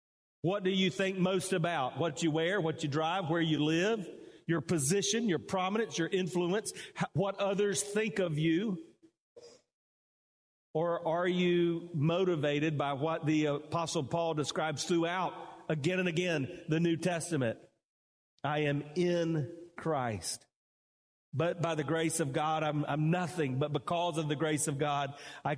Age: 40-59